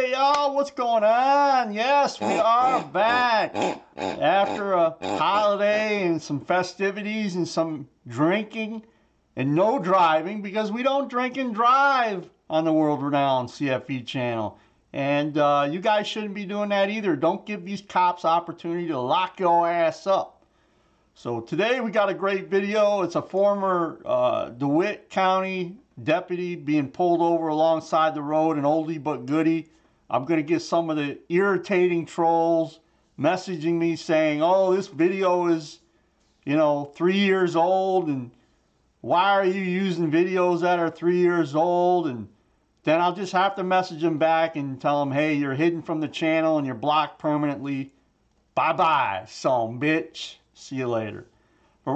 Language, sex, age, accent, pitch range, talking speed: English, male, 40-59, American, 155-200 Hz, 160 wpm